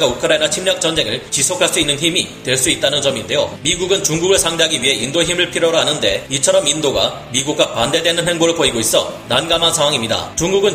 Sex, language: male, Korean